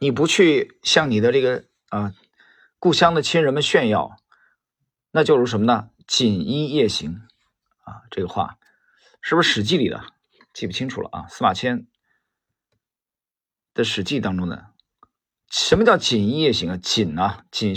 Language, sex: Chinese, male